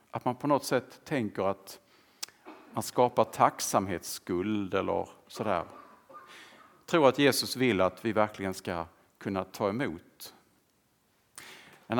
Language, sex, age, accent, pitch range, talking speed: Swedish, male, 50-69, Norwegian, 95-115 Hz, 120 wpm